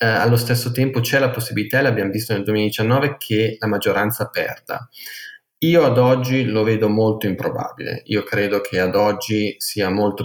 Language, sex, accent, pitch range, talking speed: Italian, male, native, 100-125 Hz, 165 wpm